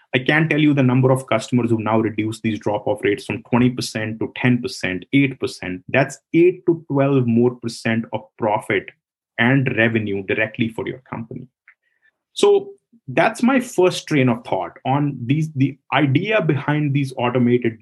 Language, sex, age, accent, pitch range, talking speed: English, male, 30-49, Indian, 115-140 Hz, 160 wpm